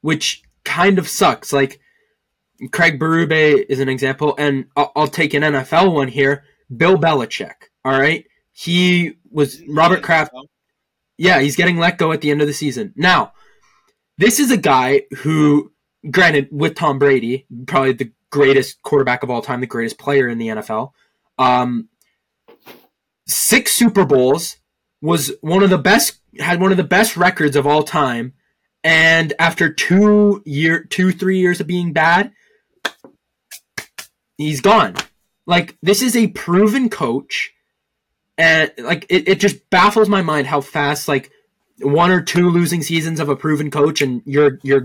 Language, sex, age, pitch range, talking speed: English, male, 20-39, 140-185 Hz, 160 wpm